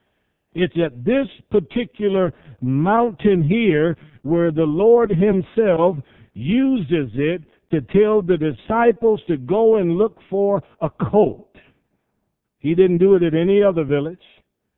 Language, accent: English, American